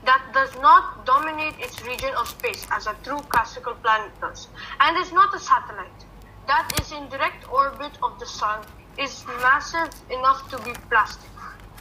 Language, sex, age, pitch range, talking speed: English, female, 20-39, 260-350 Hz, 170 wpm